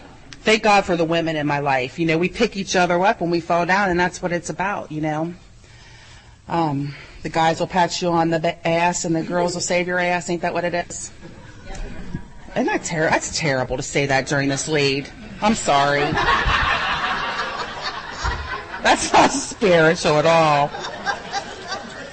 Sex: female